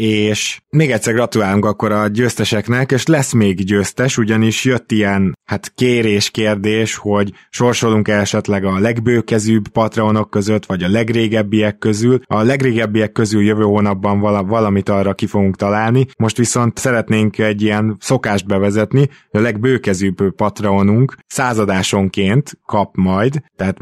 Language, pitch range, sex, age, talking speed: Hungarian, 95-110 Hz, male, 20-39, 125 wpm